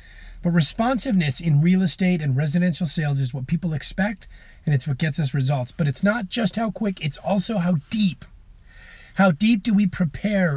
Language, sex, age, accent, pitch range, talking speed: English, male, 30-49, American, 135-185 Hz, 185 wpm